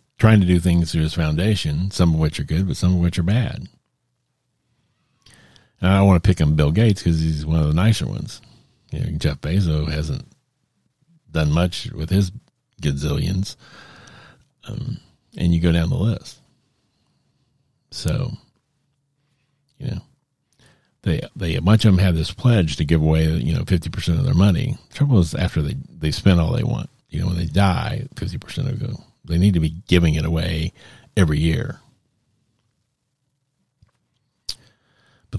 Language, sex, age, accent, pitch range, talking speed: English, male, 50-69, American, 80-120 Hz, 170 wpm